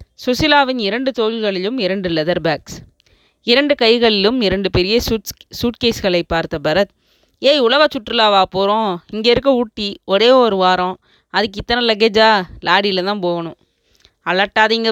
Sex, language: female, Tamil